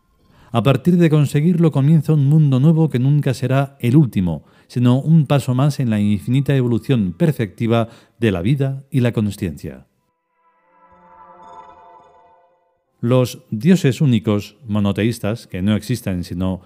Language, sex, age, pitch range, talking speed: Spanish, male, 40-59, 105-150 Hz, 130 wpm